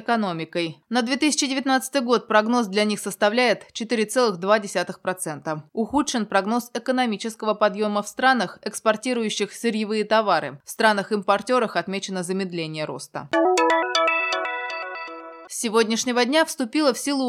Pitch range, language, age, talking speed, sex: 190-245 Hz, Russian, 20-39, 100 wpm, female